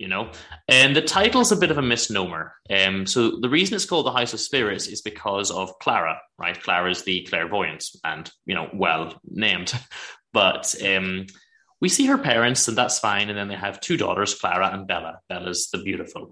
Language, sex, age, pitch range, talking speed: English, male, 20-39, 90-125 Hz, 205 wpm